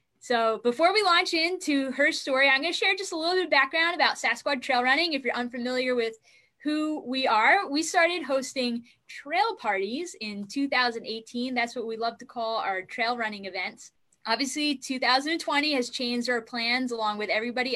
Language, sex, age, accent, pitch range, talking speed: English, female, 10-29, American, 225-275 Hz, 185 wpm